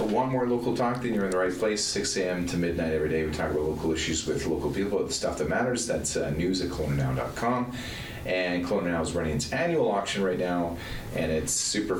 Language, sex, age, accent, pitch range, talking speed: English, male, 40-59, American, 85-105 Hz, 225 wpm